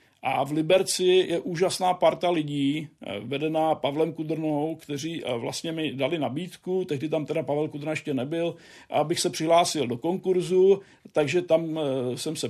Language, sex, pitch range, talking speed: Czech, male, 150-170 Hz, 150 wpm